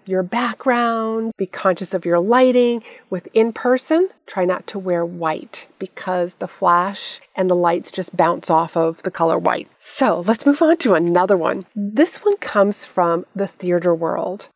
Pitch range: 180-235 Hz